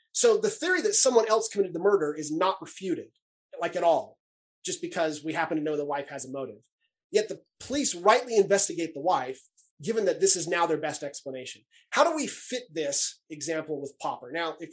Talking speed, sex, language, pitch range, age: 210 wpm, male, English, 155-195 Hz, 30-49